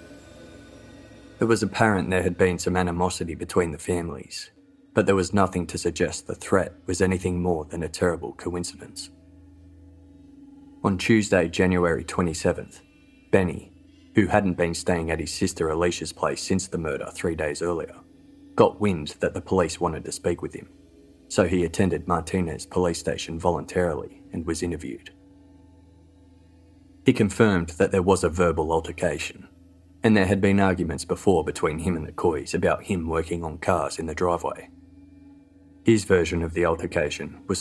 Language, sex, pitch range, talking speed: English, male, 85-95 Hz, 160 wpm